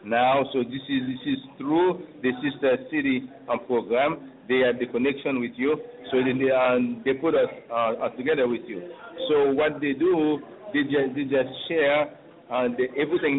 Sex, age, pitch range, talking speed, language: male, 50-69, 125-150 Hz, 180 wpm, English